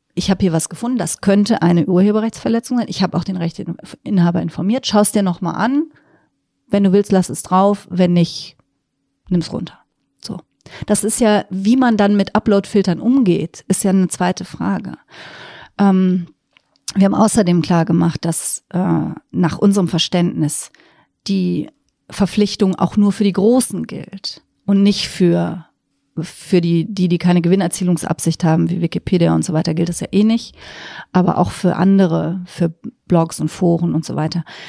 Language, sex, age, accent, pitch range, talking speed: German, female, 40-59, German, 170-200 Hz, 165 wpm